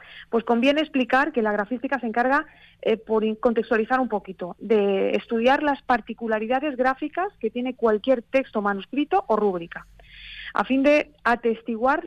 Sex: female